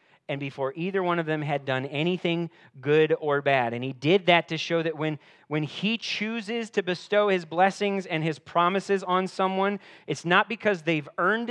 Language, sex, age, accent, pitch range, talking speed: English, male, 30-49, American, 130-175 Hz, 195 wpm